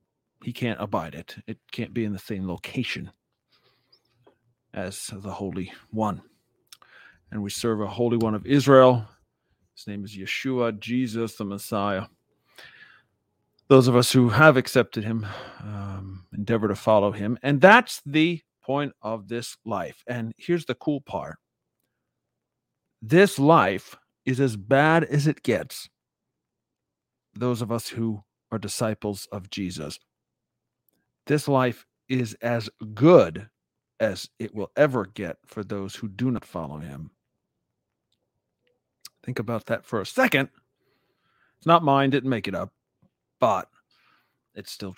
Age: 40-59